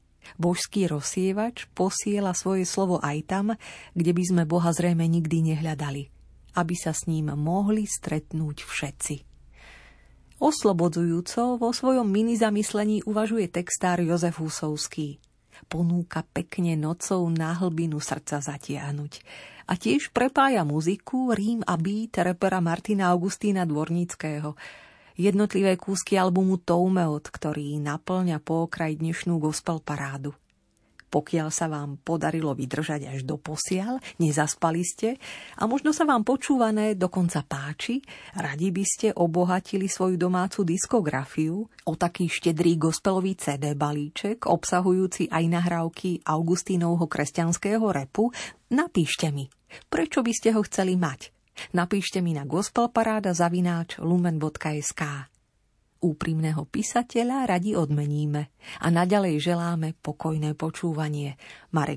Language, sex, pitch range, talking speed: Slovak, female, 155-195 Hz, 115 wpm